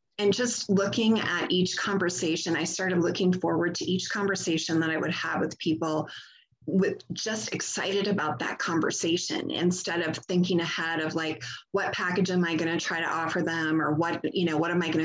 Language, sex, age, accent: English, female, 20-39, American